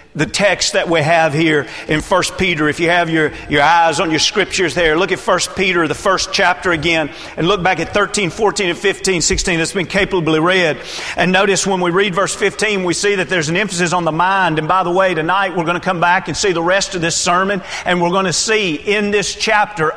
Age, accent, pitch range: 40-59, American, 175-210 Hz